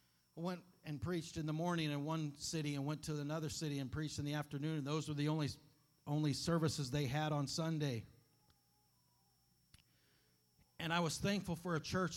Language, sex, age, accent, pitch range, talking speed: English, male, 50-69, American, 155-200 Hz, 180 wpm